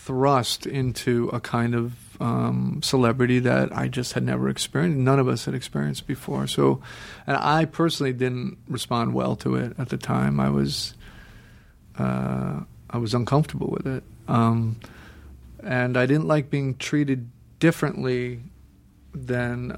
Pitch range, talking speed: 110-145 Hz, 145 wpm